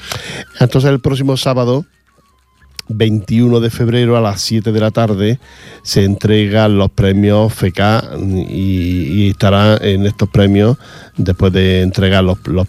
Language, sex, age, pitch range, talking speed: Portuguese, male, 50-69, 90-110 Hz, 135 wpm